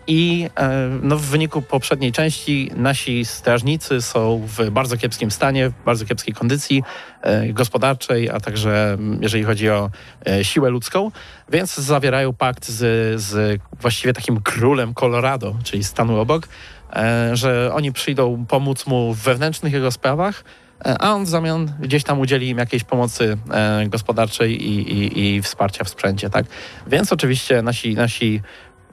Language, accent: Polish, native